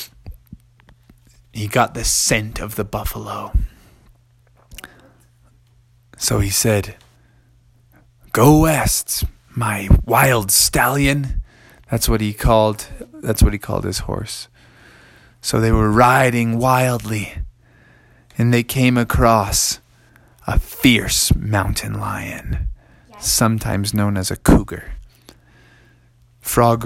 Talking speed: 100 wpm